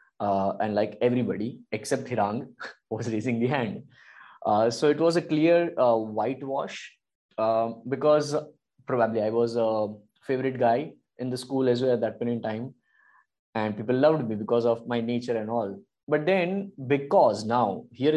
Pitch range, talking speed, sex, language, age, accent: 115-140 Hz, 170 wpm, male, English, 20-39, Indian